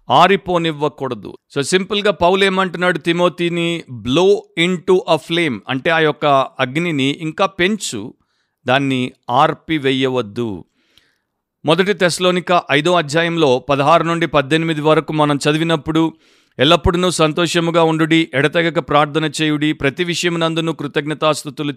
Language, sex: Telugu, male